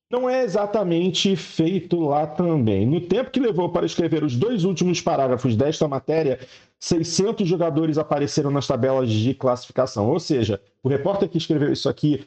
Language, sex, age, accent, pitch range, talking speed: Portuguese, male, 40-59, Brazilian, 130-170 Hz, 160 wpm